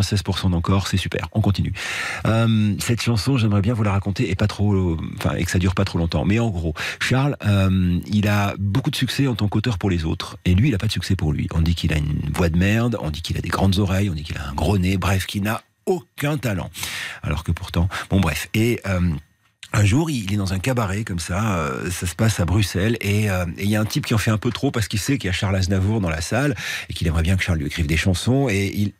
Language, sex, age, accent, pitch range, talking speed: French, male, 40-59, French, 90-120 Hz, 275 wpm